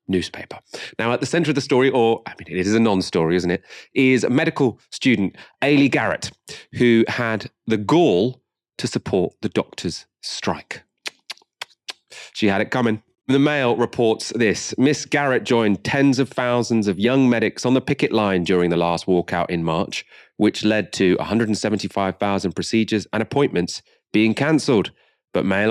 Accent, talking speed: British, 165 wpm